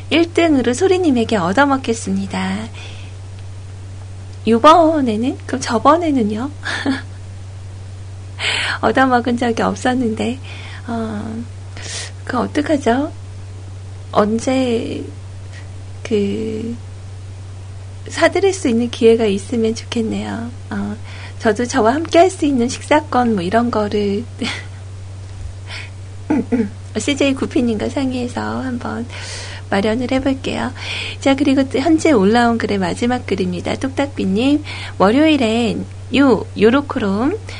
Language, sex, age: Korean, female, 40-59